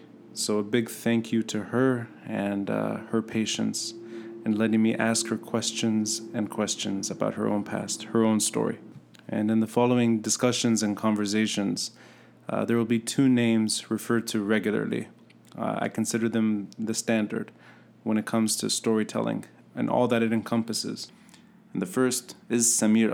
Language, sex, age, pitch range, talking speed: English, male, 30-49, 105-125 Hz, 165 wpm